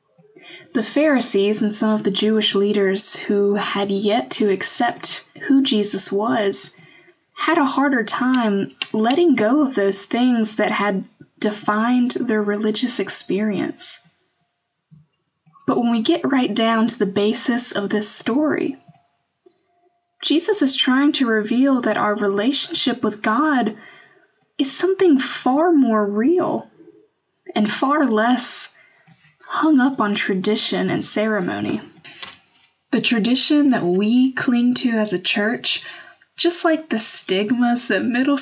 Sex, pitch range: female, 210-275 Hz